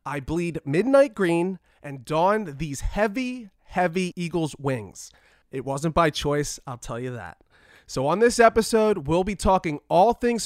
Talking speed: 160 wpm